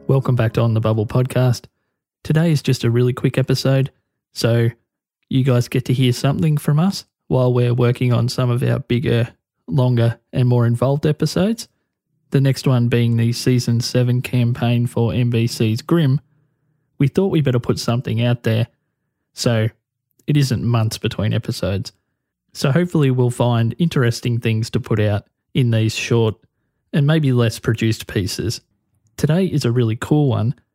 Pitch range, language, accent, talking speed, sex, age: 115-135 Hz, English, Australian, 165 wpm, male, 20-39